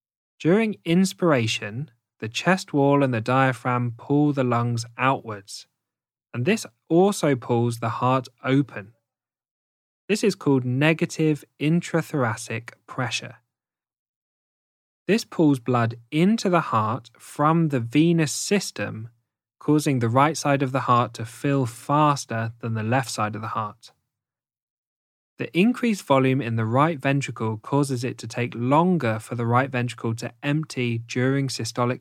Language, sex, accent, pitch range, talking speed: English, male, British, 115-145 Hz, 135 wpm